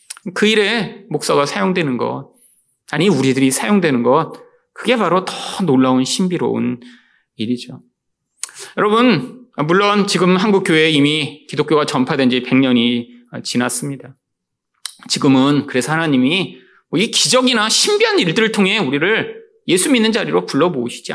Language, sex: Korean, male